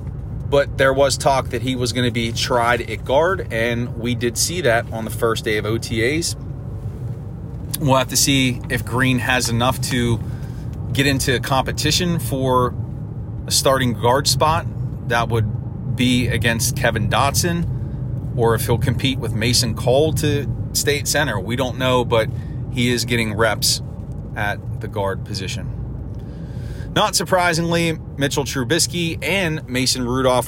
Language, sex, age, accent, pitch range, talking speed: English, male, 30-49, American, 115-130 Hz, 150 wpm